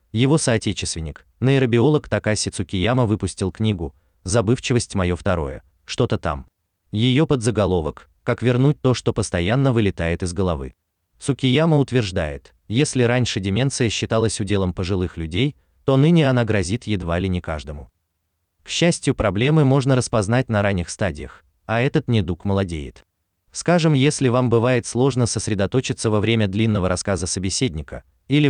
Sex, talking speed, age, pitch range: male, 135 wpm, 30-49, 90-130 Hz